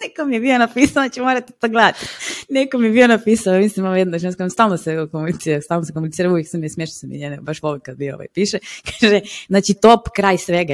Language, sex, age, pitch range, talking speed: Croatian, female, 20-39, 155-225 Hz, 235 wpm